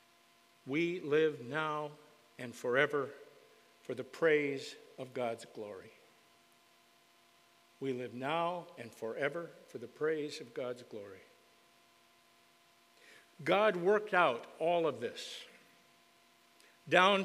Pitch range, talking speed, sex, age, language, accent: 145-195 Hz, 100 wpm, male, 60-79, English, American